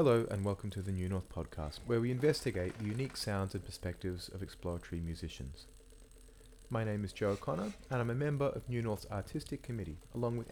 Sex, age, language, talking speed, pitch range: male, 30-49, English, 200 wpm, 90-125 Hz